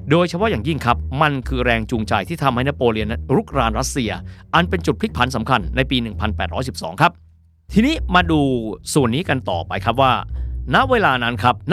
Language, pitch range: Thai, 95-150 Hz